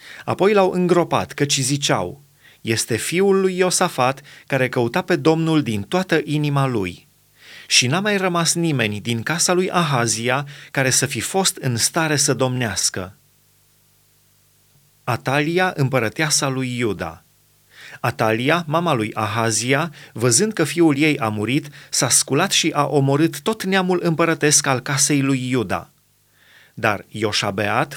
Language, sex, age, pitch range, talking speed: Romanian, male, 30-49, 120-155 Hz, 135 wpm